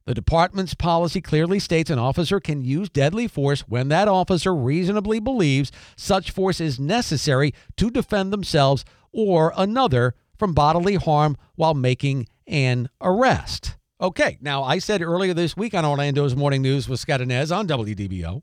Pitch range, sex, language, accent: 135-185 Hz, male, English, American